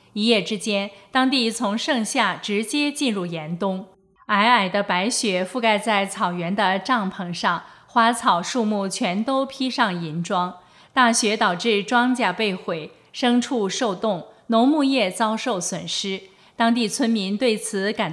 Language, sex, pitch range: Chinese, female, 190-240 Hz